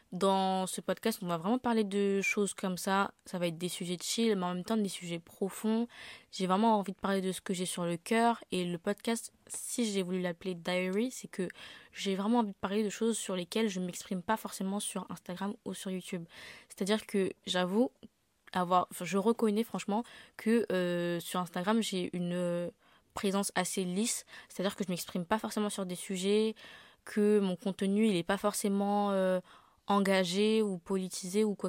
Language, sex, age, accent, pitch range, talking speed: French, female, 20-39, French, 180-215 Hz, 200 wpm